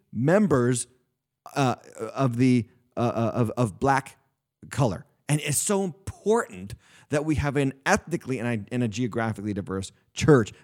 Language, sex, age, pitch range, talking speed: English, male, 30-49, 115-140 Hz, 140 wpm